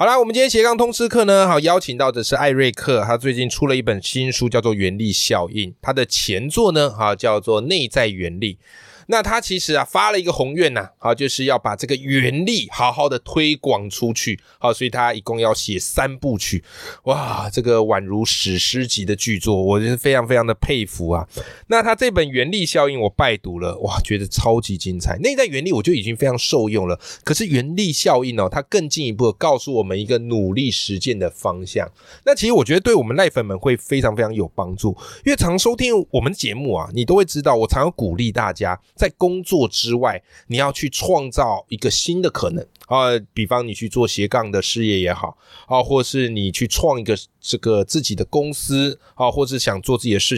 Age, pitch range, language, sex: 20-39, 105-150 Hz, Chinese, male